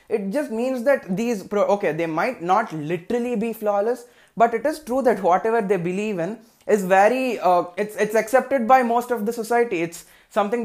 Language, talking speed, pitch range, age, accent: Telugu, 190 wpm, 175-225 Hz, 20-39, native